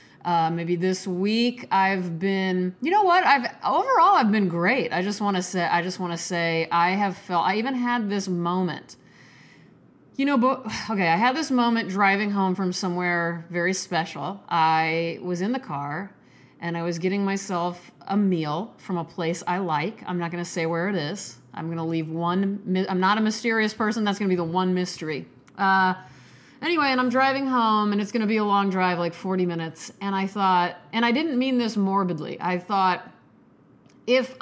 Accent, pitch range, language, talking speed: American, 175-210 Hz, English, 200 wpm